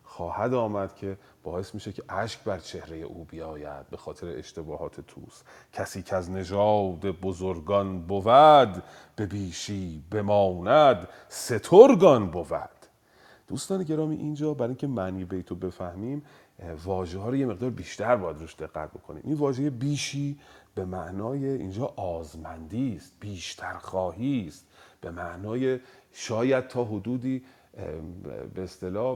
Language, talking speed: Persian, 130 wpm